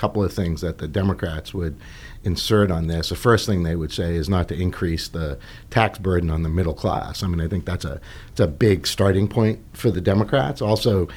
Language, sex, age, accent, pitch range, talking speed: English, male, 50-69, American, 85-105 Hz, 225 wpm